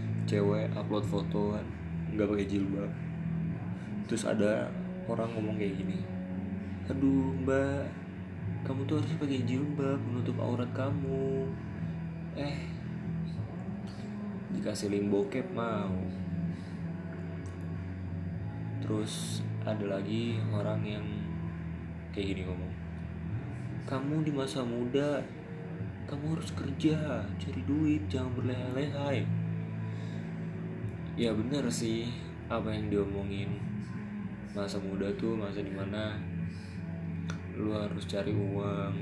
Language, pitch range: Indonesian, 90-110 Hz